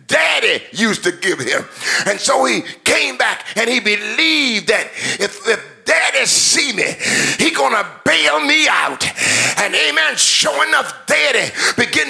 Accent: American